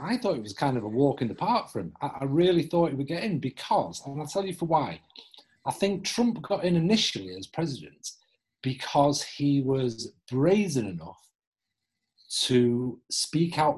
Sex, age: male, 40-59